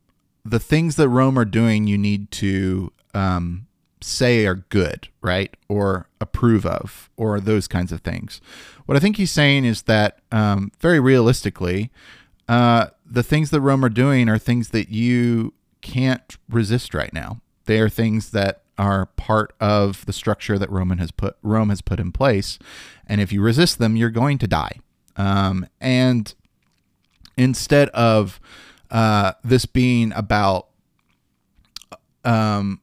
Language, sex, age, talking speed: English, male, 30-49, 145 wpm